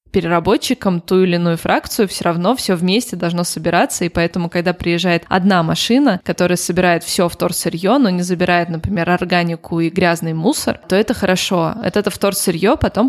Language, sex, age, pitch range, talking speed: Russian, female, 20-39, 170-200 Hz, 165 wpm